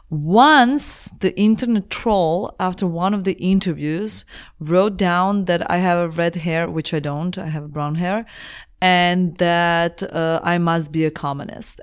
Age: 30-49